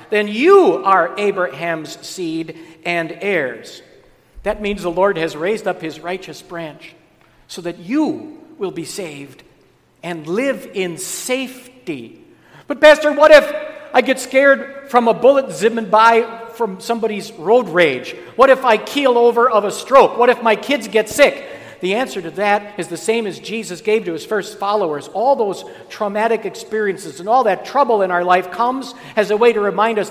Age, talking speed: 50-69, 175 wpm